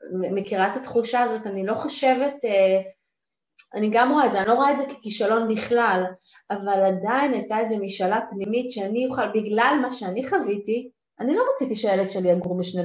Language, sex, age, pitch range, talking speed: Hebrew, female, 30-49, 190-250 Hz, 180 wpm